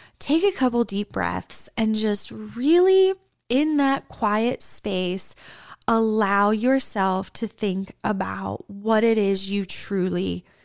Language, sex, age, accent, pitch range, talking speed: English, female, 10-29, American, 195-240 Hz, 125 wpm